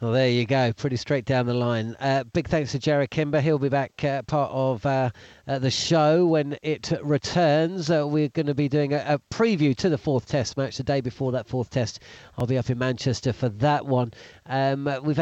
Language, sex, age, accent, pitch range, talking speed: English, male, 40-59, British, 130-165 Hz, 230 wpm